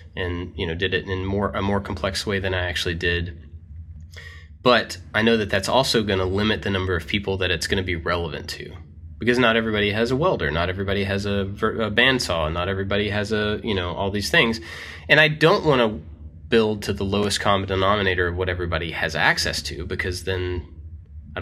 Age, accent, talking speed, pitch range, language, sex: 20-39, American, 215 wpm, 80-105 Hz, English, male